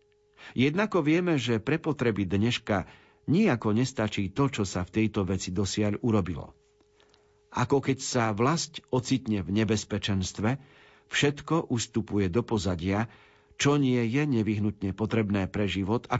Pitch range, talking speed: 105-135 Hz, 130 wpm